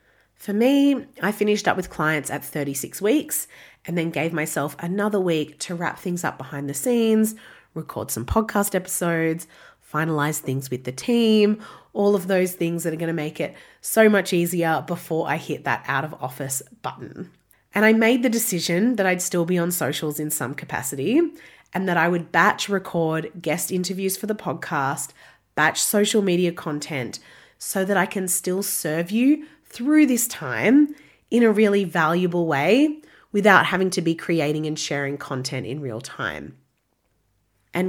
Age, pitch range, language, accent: 30-49, 150-200 Hz, English, Australian